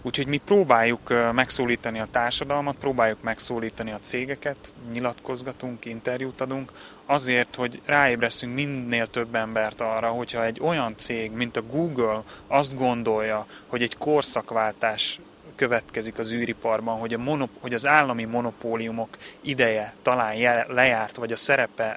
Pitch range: 115-130 Hz